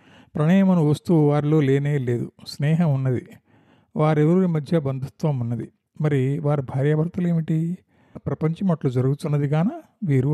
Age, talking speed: 50-69, 105 wpm